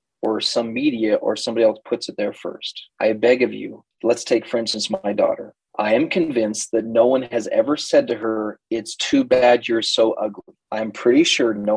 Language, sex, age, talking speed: English, male, 30-49, 210 wpm